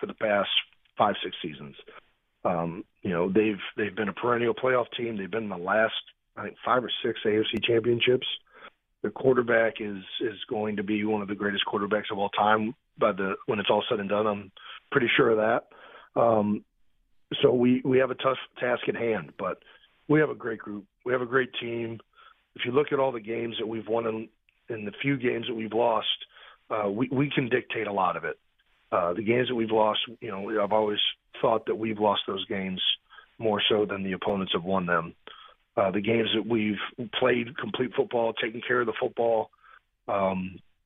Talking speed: 210 wpm